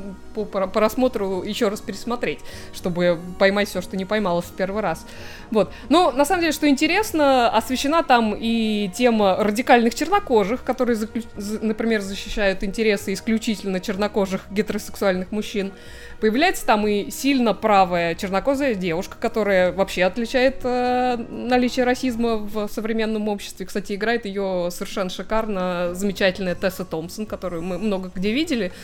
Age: 20-39